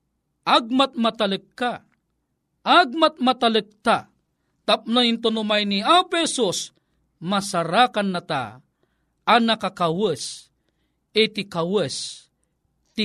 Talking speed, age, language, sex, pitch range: 75 wpm, 50-69, Filipino, male, 185-255 Hz